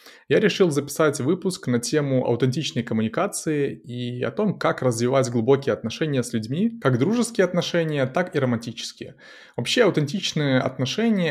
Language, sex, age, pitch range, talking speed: Russian, male, 20-39, 120-160 Hz, 140 wpm